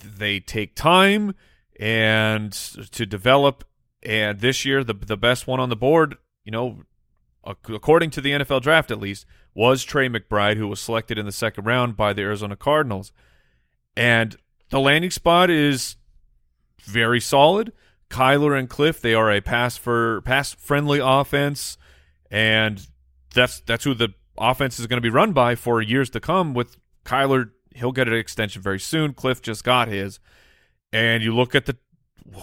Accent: American